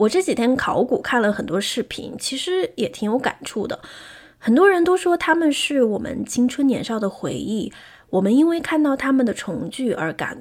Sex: female